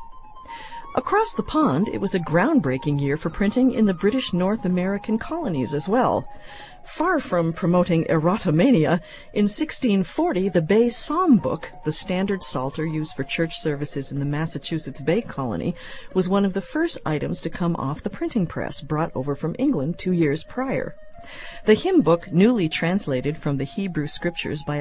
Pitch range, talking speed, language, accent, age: 155-225 Hz, 165 wpm, English, American, 50-69